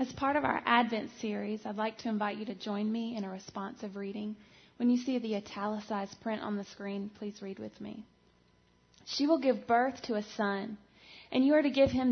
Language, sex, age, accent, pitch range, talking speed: English, female, 20-39, American, 200-245 Hz, 220 wpm